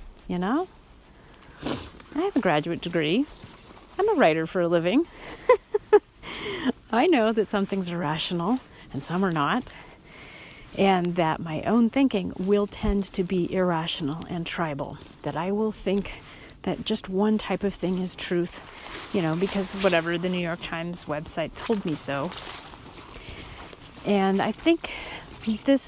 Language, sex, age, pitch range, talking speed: English, female, 40-59, 155-200 Hz, 150 wpm